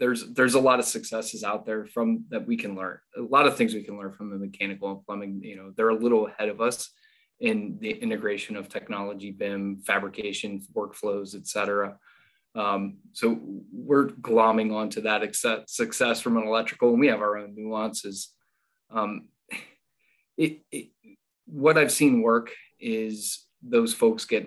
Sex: male